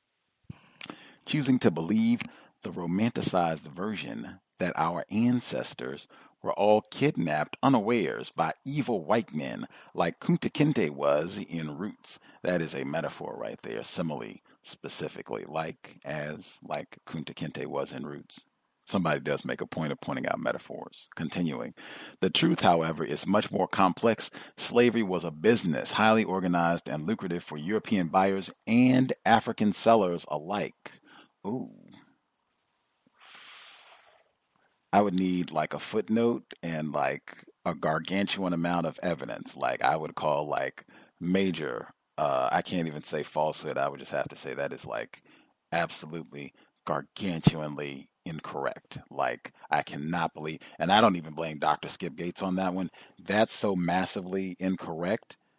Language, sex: English, male